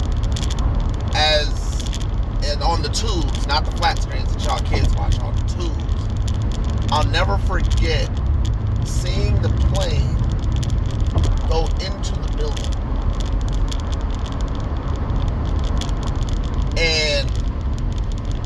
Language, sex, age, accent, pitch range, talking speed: English, male, 30-49, American, 85-105 Hz, 90 wpm